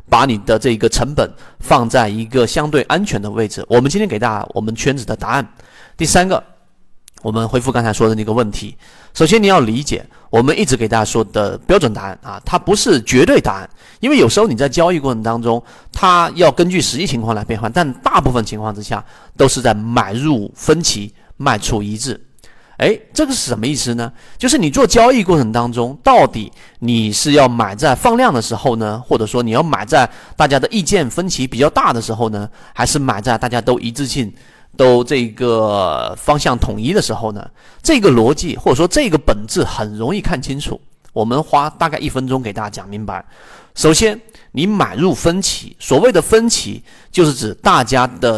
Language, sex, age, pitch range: Chinese, male, 30-49, 115-155 Hz